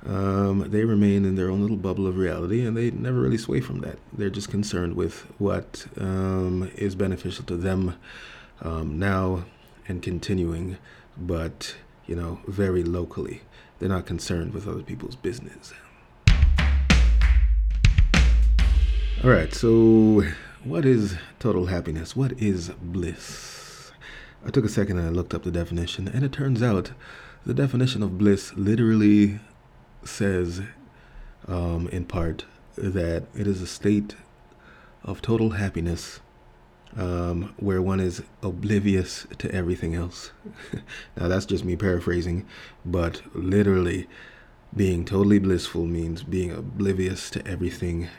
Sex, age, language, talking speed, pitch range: male, 30-49, English, 135 wpm, 85-105 Hz